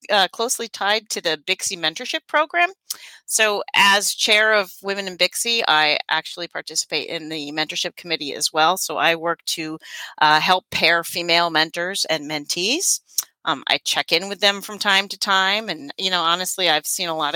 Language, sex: English, female